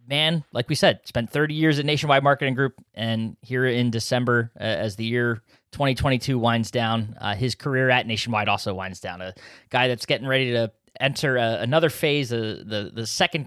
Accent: American